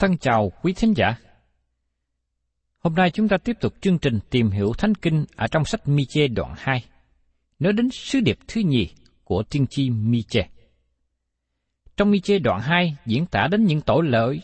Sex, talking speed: male, 180 wpm